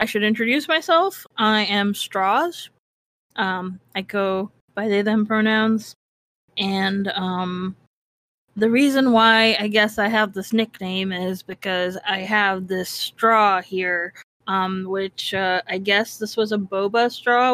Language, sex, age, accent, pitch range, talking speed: English, female, 20-39, American, 195-225 Hz, 140 wpm